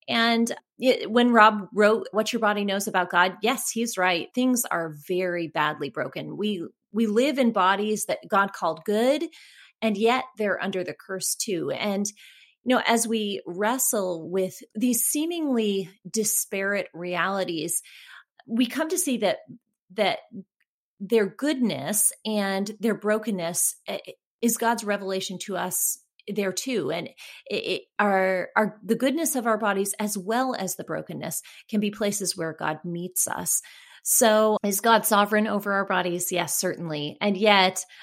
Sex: female